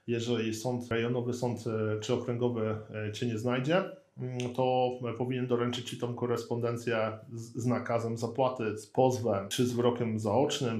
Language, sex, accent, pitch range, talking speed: Polish, male, native, 115-135 Hz, 135 wpm